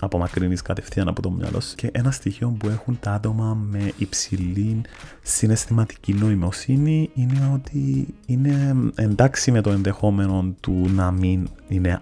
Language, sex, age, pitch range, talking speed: Greek, male, 30-49, 95-130 Hz, 135 wpm